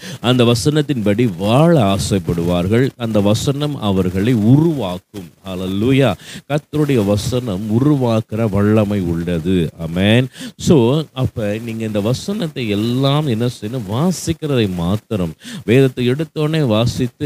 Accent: native